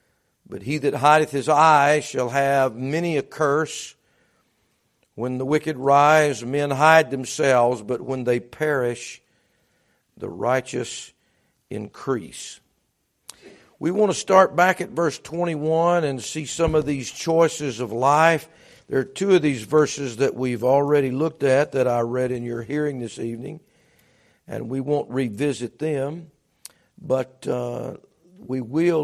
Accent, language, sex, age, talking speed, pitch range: American, English, male, 50-69, 145 wpm, 125-160 Hz